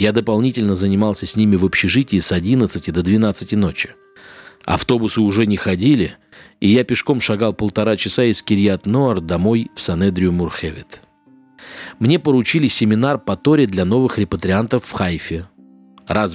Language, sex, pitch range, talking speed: Russian, male, 95-120 Hz, 140 wpm